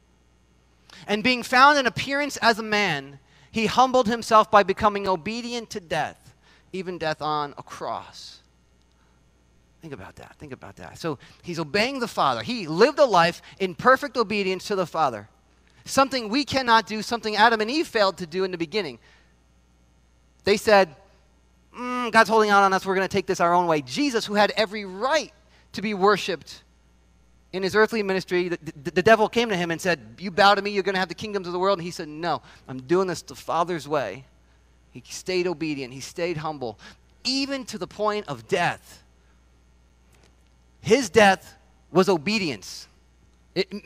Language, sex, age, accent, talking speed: English, male, 30-49, American, 180 wpm